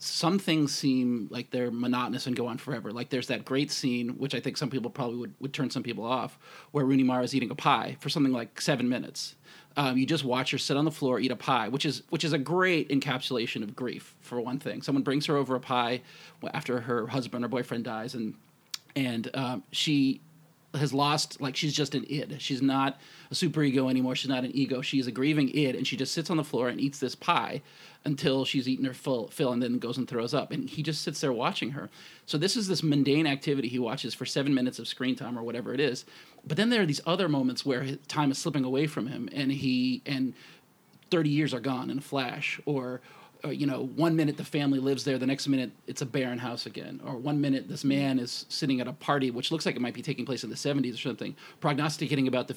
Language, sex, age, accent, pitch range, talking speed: English, male, 30-49, American, 130-150 Hz, 245 wpm